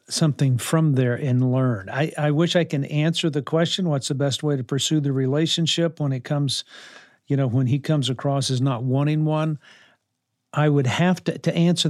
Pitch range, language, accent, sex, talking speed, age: 130-155 Hz, English, American, male, 200 wpm, 50-69